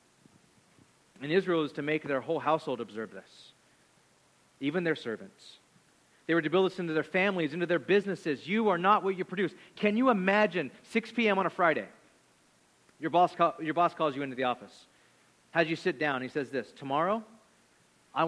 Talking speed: 180 wpm